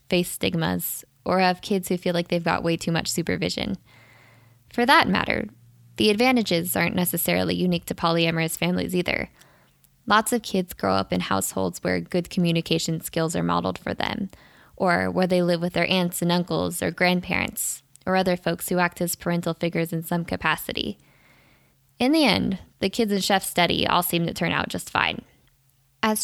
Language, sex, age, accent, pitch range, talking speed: English, female, 10-29, American, 165-205 Hz, 180 wpm